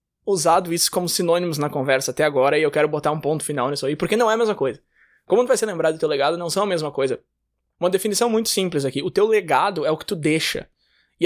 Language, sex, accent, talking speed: Portuguese, male, Brazilian, 265 wpm